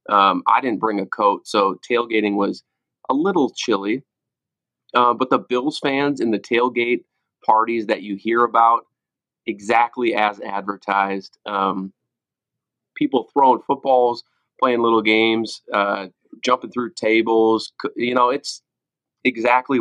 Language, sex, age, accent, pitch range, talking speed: English, male, 30-49, American, 105-125 Hz, 130 wpm